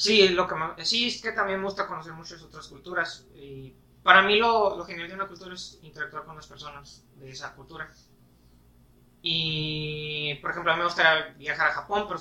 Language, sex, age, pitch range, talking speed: Spanish, male, 30-49, 135-175 Hz, 205 wpm